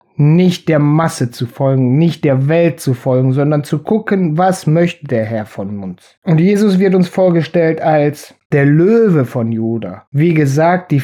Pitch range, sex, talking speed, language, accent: 140-185 Hz, male, 175 wpm, German, German